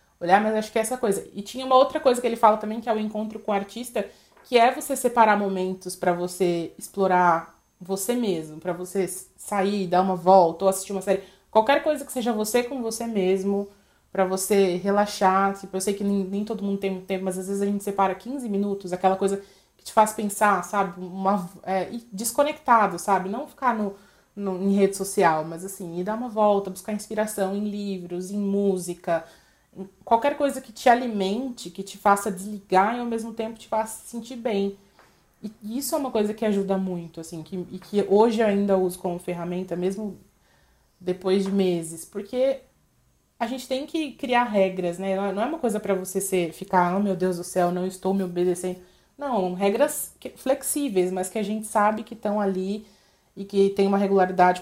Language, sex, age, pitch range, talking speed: Portuguese, female, 20-39, 185-220 Hz, 200 wpm